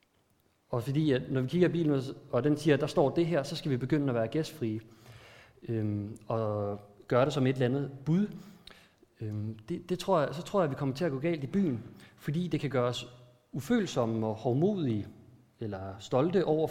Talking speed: 210 wpm